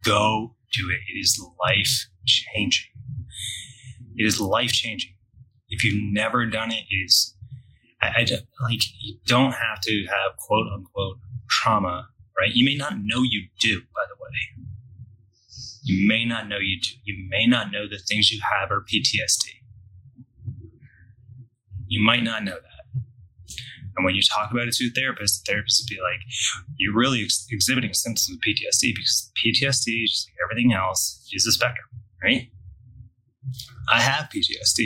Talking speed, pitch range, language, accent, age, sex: 165 wpm, 100-125 Hz, English, American, 20-39, male